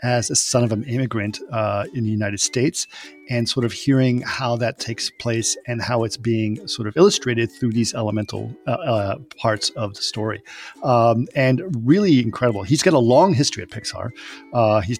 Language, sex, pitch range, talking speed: English, male, 110-125 Hz, 190 wpm